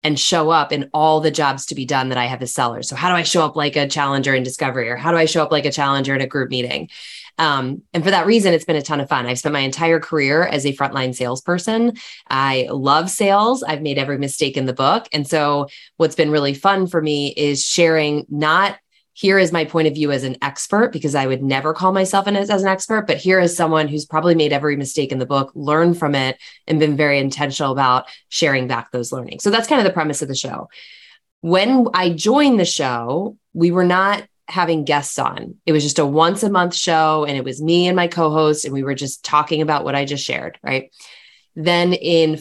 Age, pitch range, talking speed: 20-39, 140-170 Hz, 240 wpm